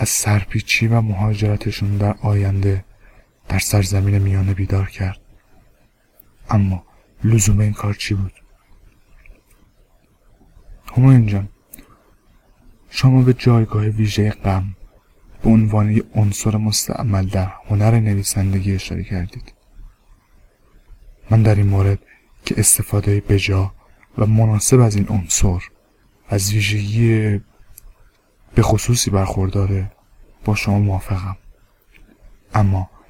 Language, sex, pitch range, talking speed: Persian, male, 100-110 Hz, 95 wpm